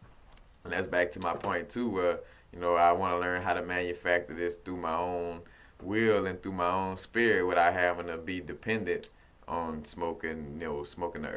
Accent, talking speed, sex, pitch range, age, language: American, 200 wpm, male, 80-100 Hz, 20-39, English